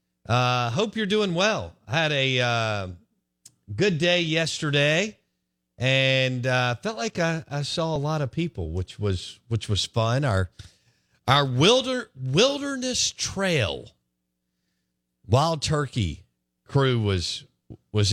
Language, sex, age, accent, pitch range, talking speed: English, male, 50-69, American, 85-130 Hz, 125 wpm